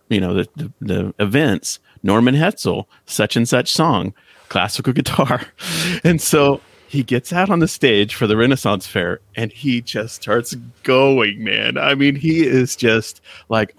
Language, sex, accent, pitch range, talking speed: English, male, American, 105-140 Hz, 165 wpm